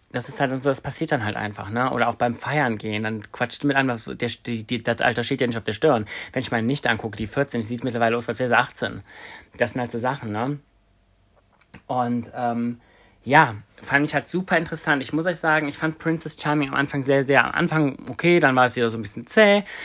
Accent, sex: German, male